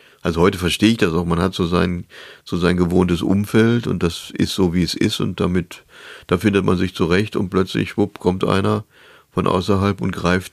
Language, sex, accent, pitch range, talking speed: German, male, German, 85-95 Hz, 210 wpm